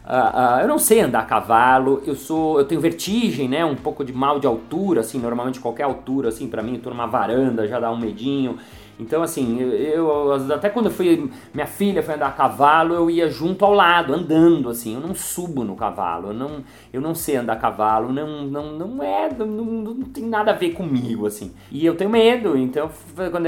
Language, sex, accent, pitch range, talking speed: Portuguese, male, Brazilian, 125-170 Hz, 220 wpm